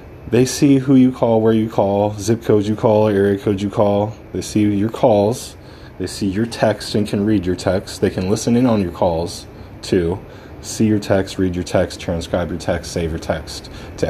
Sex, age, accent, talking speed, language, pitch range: male, 20-39, American, 215 wpm, English, 85-105 Hz